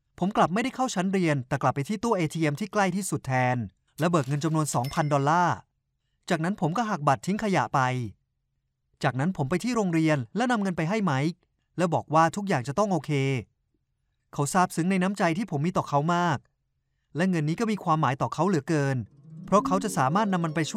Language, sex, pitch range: Thai, male, 135-190 Hz